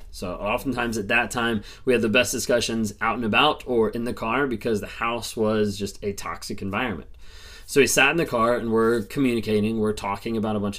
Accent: American